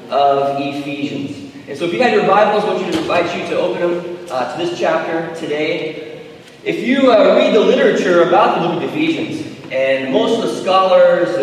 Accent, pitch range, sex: American, 160-215 Hz, male